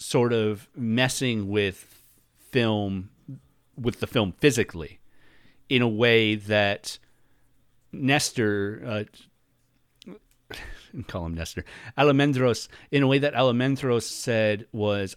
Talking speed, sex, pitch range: 105 wpm, male, 95-125 Hz